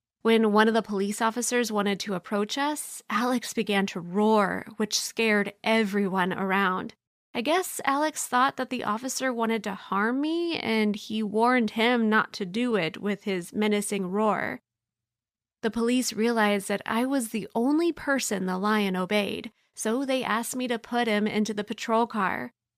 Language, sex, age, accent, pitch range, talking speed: English, female, 20-39, American, 195-235 Hz, 170 wpm